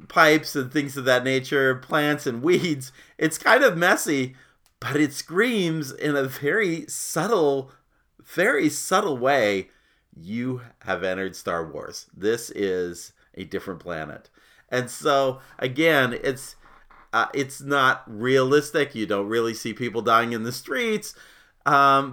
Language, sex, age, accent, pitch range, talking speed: English, male, 40-59, American, 100-135 Hz, 140 wpm